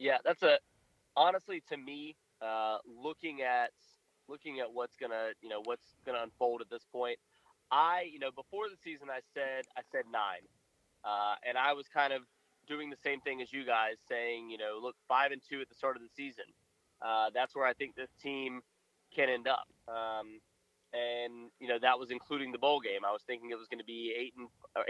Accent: American